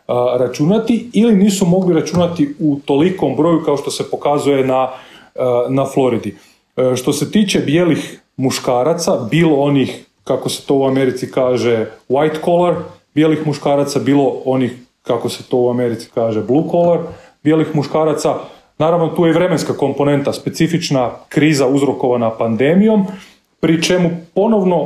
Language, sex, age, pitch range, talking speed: Croatian, male, 30-49, 135-170 Hz, 135 wpm